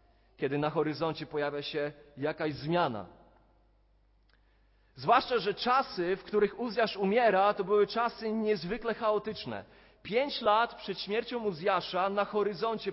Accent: native